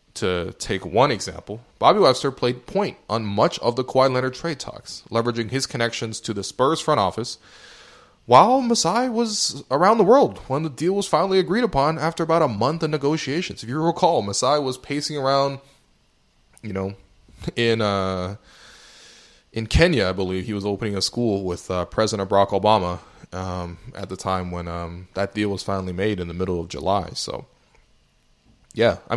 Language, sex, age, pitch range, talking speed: English, male, 20-39, 95-130 Hz, 180 wpm